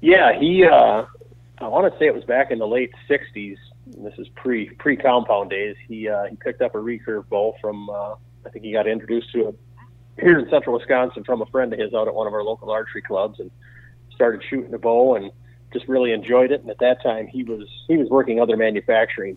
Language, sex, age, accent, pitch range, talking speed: English, male, 40-59, American, 110-125 Hz, 230 wpm